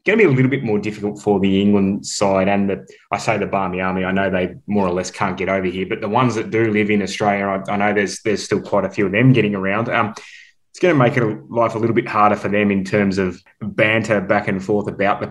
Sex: male